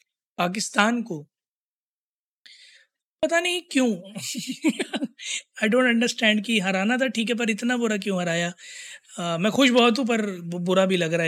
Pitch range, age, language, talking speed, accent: 190-240 Hz, 20-39, Hindi, 150 wpm, native